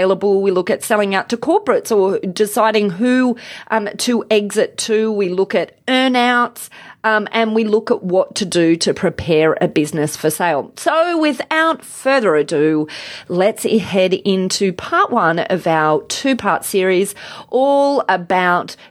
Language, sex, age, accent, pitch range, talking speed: English, female, 30-49, Australian, 185-245 Hz, 150 wpm